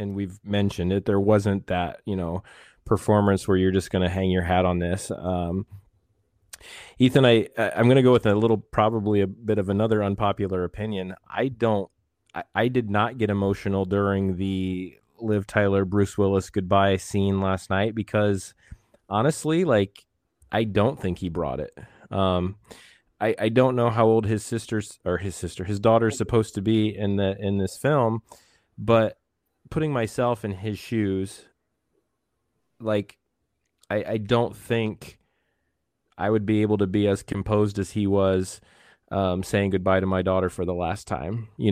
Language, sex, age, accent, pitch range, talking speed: English, male, 20-39, American, 95-110 Hz, 175 wpm